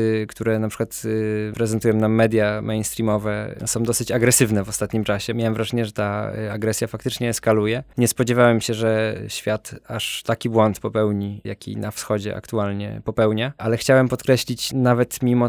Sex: male